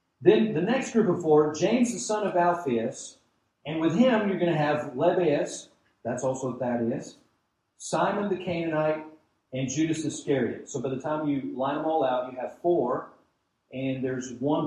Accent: American